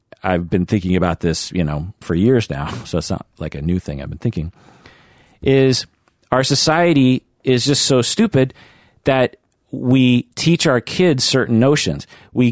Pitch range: 95-140 Hz